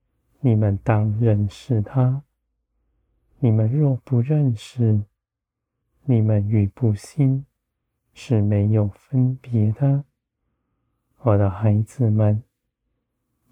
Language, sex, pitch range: Chinese, male, 105-125 Hz